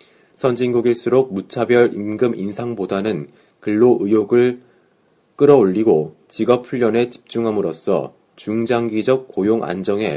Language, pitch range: Korean, 105-125 Hz